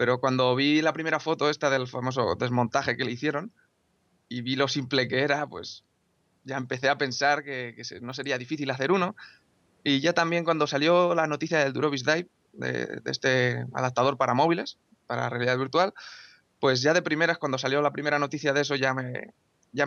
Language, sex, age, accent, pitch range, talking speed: Spanish, male, 20-39, Spanish, 125-145 Hz, 195 wpm